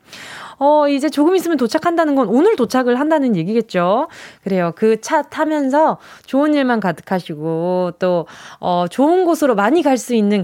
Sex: female